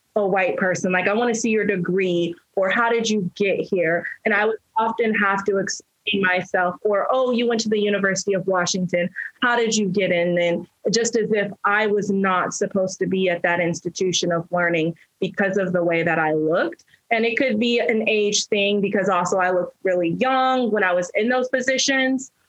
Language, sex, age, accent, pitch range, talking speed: English, female, 20-39, American, 180-220 Hz, 210 wpm